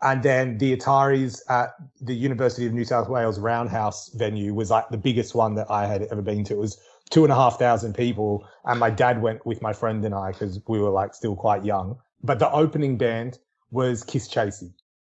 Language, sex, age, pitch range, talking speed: English, male, 30-49, 105-125 Hz, 205 wpm